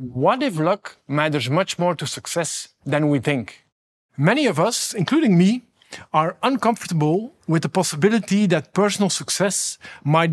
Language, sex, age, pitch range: English, male, 50-69, 155-195 Hz